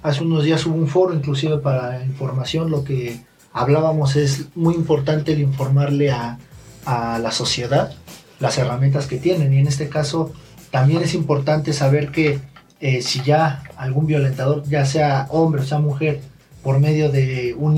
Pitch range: 135-155 Hz